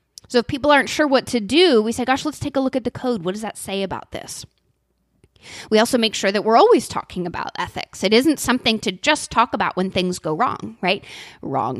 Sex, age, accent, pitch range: female, 20-39, American, 190-255 Hz